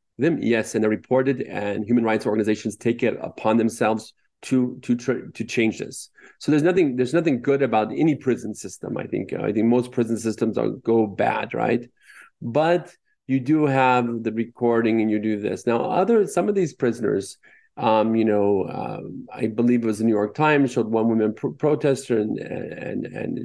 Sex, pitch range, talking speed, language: male, 110-135 Hz, 195 wpm, English